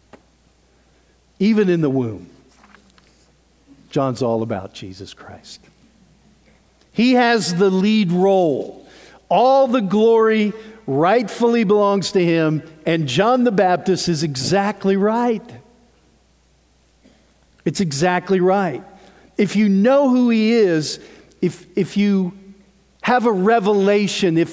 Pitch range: 135-195 Hz